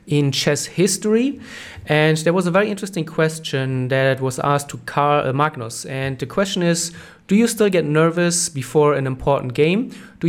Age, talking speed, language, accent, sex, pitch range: 30-49, 175 wpm, English, German, male, 140-170 Hz